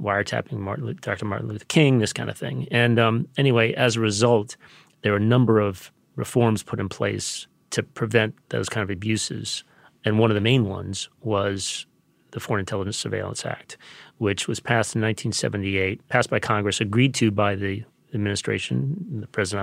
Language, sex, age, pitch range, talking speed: English, male, 30-49, 100-120 Hz, 175 wpm